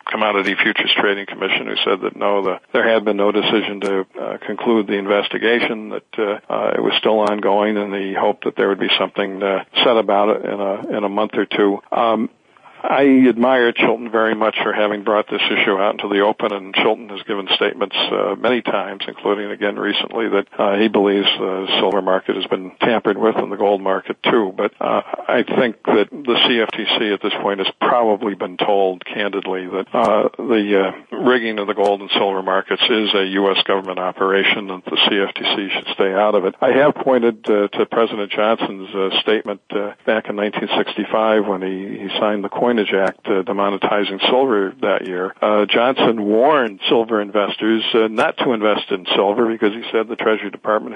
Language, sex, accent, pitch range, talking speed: English, male, American, 100-110 Hz, 195 wpm